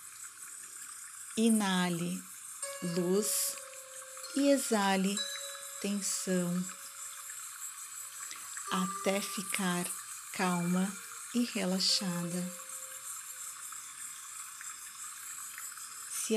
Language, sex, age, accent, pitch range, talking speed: Portuguese, female, 40-59, Brazilian, 190-240 Hz, 40 wpm